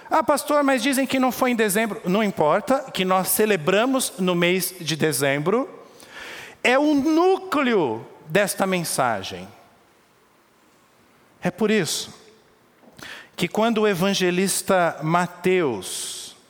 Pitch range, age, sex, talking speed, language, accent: 175-235 Hz, 50-69, male, 115 wpm, Portuguese, Brazilian